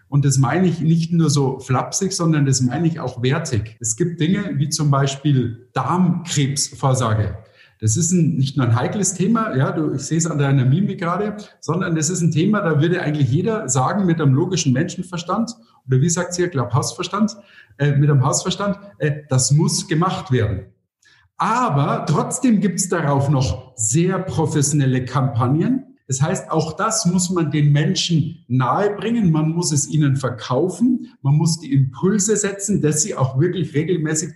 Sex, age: male, 50-69